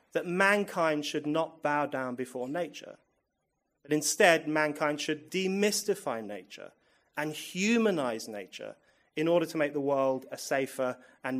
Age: 30-49